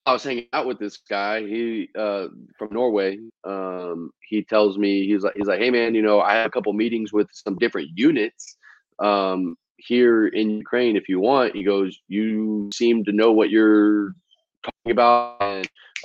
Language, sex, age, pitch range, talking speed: English, male, 30-49, 100-120 Hz, 185 wpm